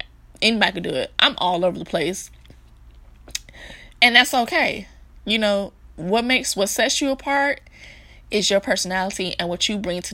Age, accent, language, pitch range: 20-39, American, English, 180-215 Hz